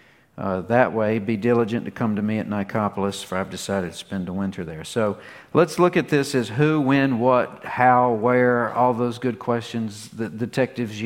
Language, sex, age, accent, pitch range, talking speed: English, male, 50-69, American, 105-125 Hz, 195 wpm